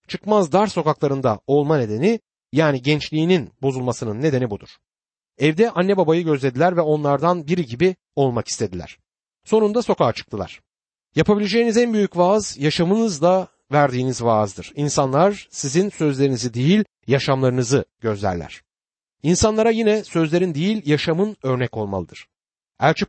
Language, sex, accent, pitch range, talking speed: Turkish, male, native, 130-195 Hz, 115 wpm